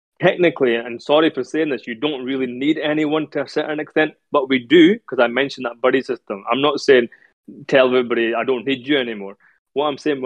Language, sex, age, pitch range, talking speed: English, male, 20-39, 120-150 Hz, 215 wpm